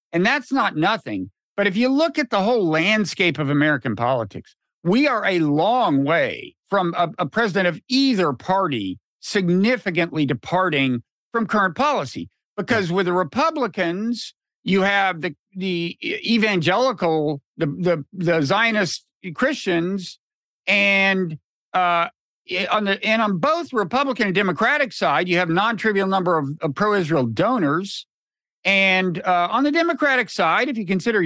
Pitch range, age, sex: 165-230 Hz, 50-69, male